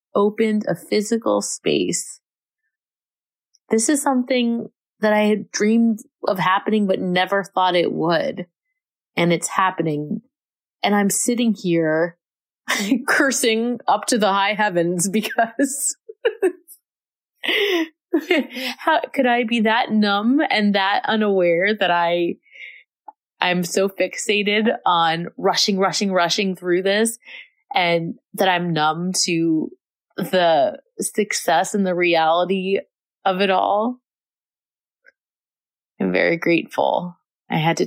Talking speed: 115 wpm